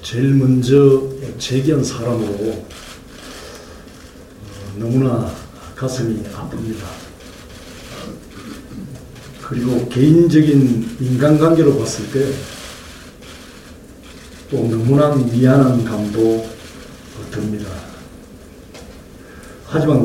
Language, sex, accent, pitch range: Korean, male, native, 115-150 Hz